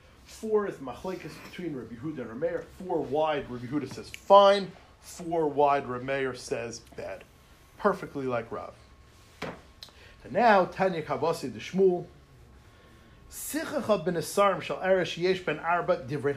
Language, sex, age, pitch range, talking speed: English, male, 40-59, 125-185 Hz, 135 wpm